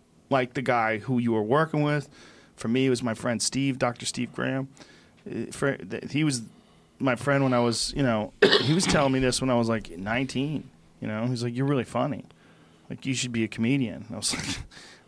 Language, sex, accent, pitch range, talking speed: English, male, American, 120-145 Hz, 225 wpm